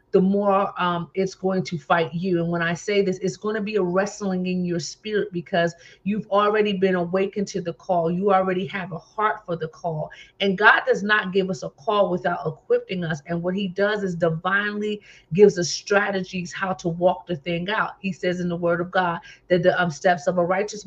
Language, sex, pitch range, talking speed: English, female, 175-200 Hz, 225 wpm